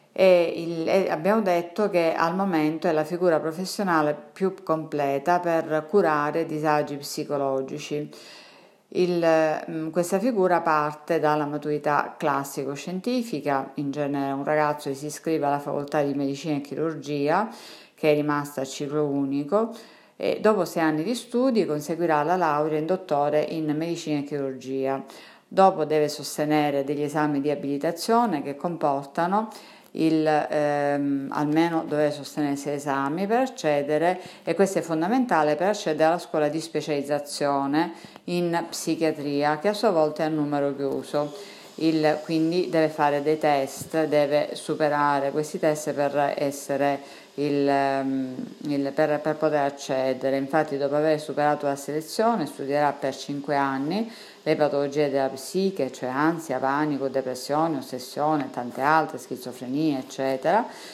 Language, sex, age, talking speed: Italian, female, 50-69, 135 wpm